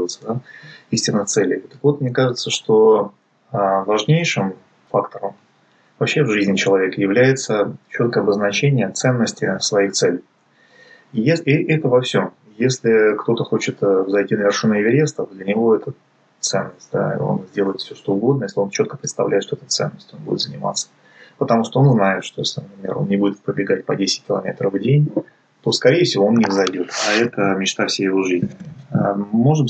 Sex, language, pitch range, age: male, Russian, 95-125 Hz, 20-39